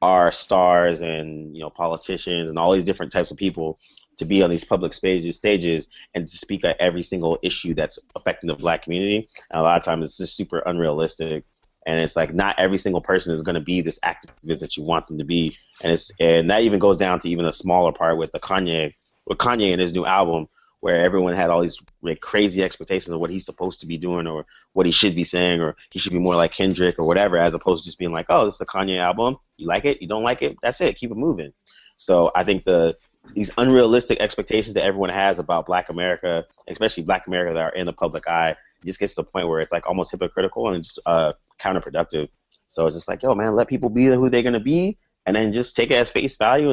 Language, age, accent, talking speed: English, 30-49, American, 250 wpm